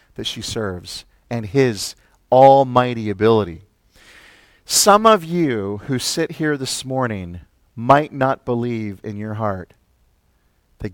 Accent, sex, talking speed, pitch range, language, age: American, male, 120 wpm, 100-125 Hz, English, 40-59